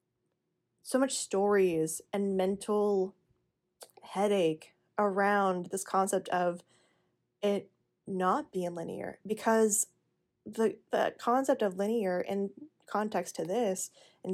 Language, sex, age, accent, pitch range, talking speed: English, female, 20-39, American, 185-215 Hz, 105 wpm